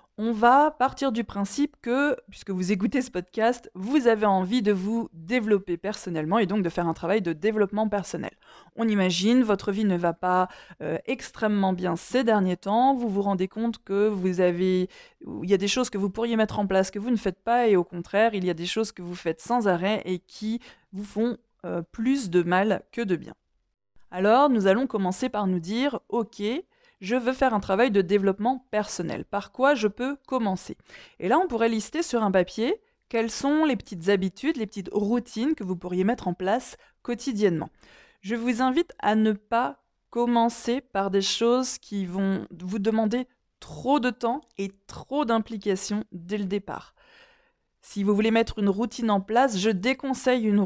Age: 20-39